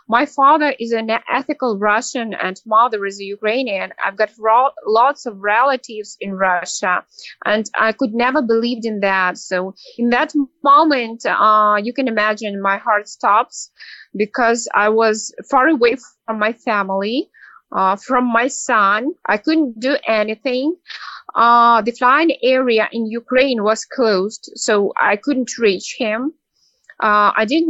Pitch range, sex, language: 210-265 Hz, female, English